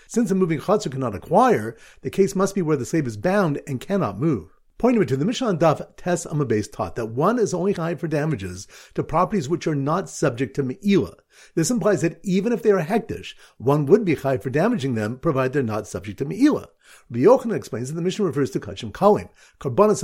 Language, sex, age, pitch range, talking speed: English, male, 50-69, 135-200 Hz, 220 wpm